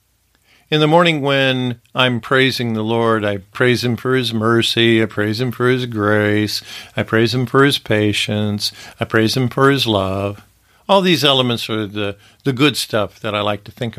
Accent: American